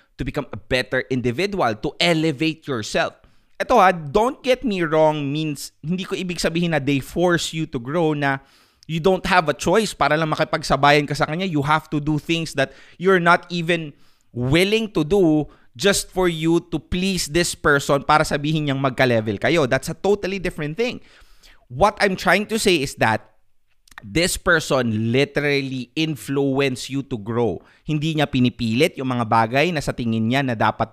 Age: 20-39